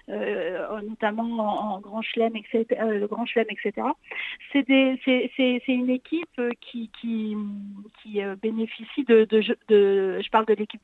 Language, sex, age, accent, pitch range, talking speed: French, female, 50-69, French, 215-260 Hz, 170 wpm